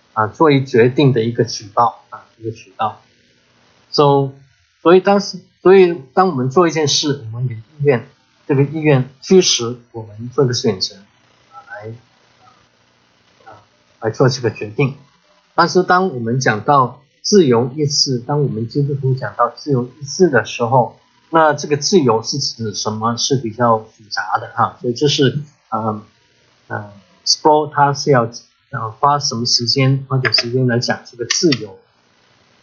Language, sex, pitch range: English, male, 115-145 Hz